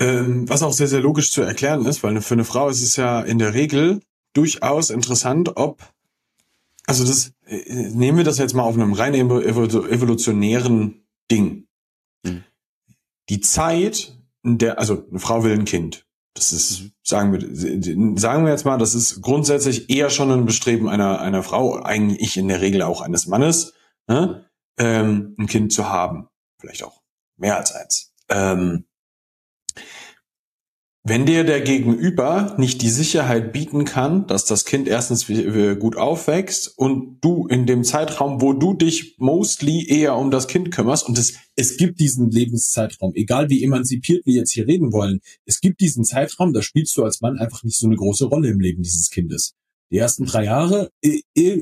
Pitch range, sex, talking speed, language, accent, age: 110-145 Hz, male, 165 wpm, German, German, 40-59